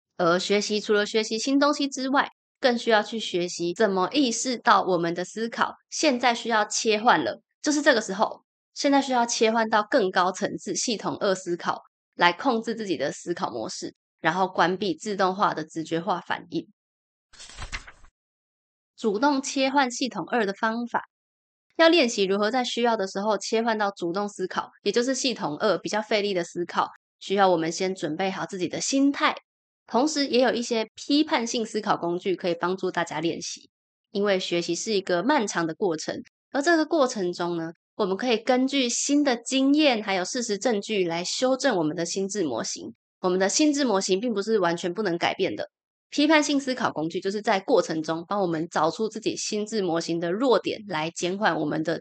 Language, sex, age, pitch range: Chinese, female, 20-39, 175-245 Hz